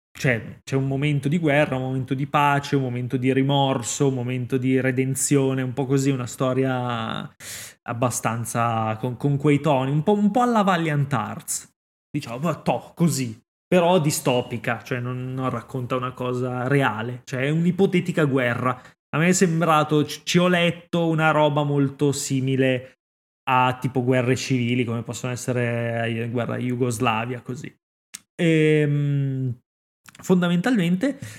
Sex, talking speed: male, 145 wpm